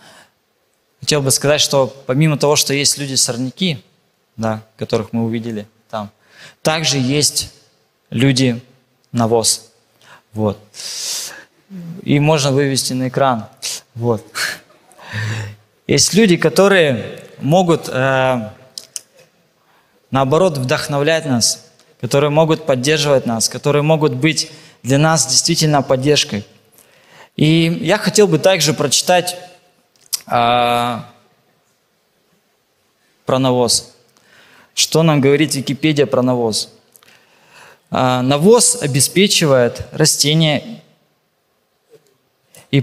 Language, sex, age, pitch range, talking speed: Russian, male, 20-39, 120-155 Hz, 80 wpm